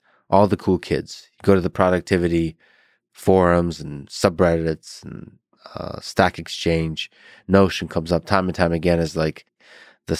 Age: 30-49